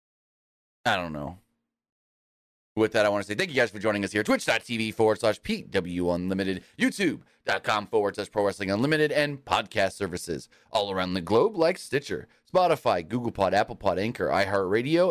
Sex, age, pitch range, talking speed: male, 30-49, 100-130 Hz, 165 wpm